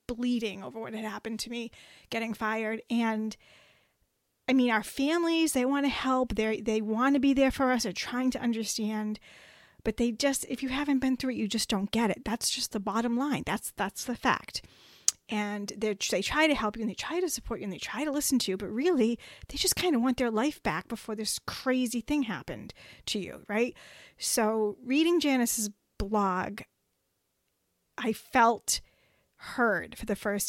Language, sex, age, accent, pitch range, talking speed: English, female, 30-49, American, 205-250 Hz, 200 wpm